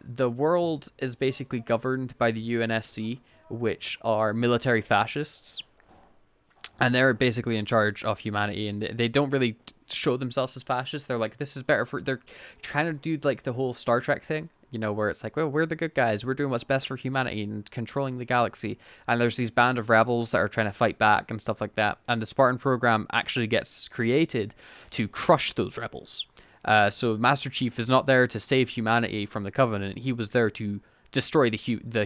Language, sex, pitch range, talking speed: English, male, 110-135 Hz, 210 wpm